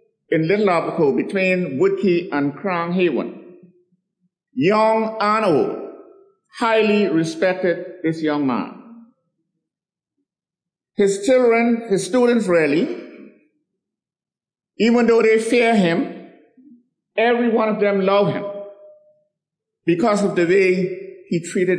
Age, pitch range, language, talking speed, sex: 50-69, 180-235 Hz, English, 100 wpm, male